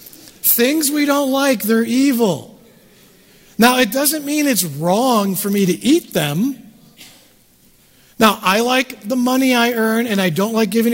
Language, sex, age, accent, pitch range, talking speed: English, male, 50-69, American, 185-235 Hz, 160 wpm